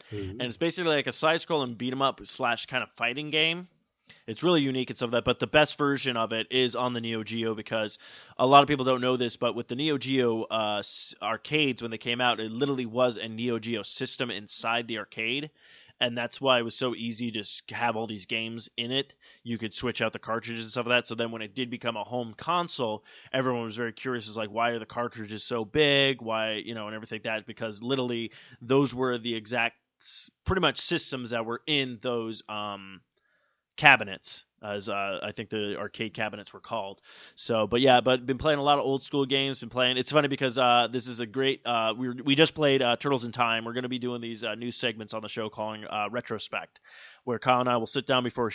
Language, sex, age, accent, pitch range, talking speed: English, male, 20-39, American, 115-130 Hz, 240 wpm